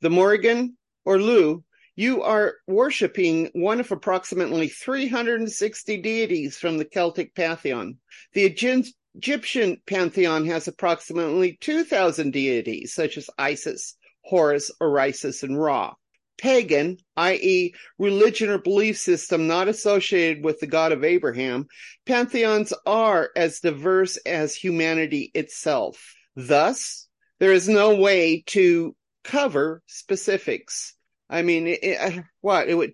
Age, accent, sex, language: 40-59, American, male, English